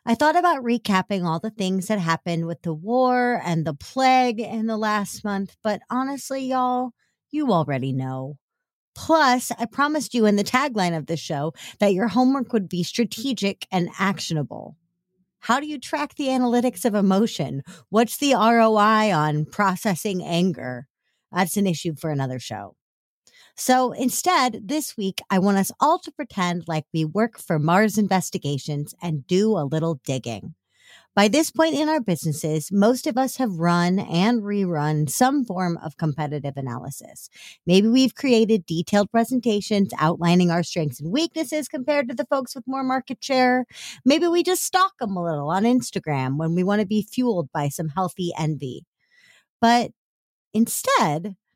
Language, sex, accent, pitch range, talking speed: English, female, American, 170-250 Hz, 165 wpm